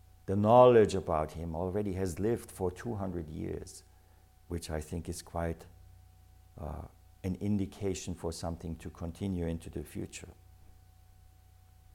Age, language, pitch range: 60-79, English, 85-95 Hz